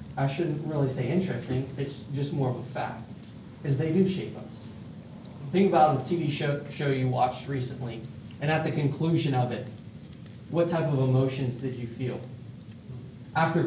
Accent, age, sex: American, 20-39, male